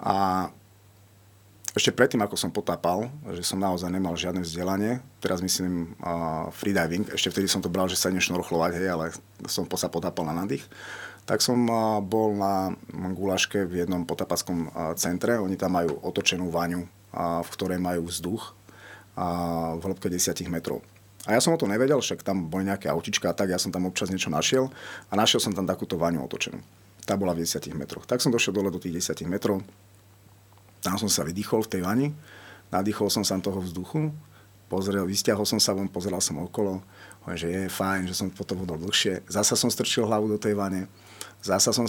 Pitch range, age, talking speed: 90-105 Hz, 30-49, 185 wpm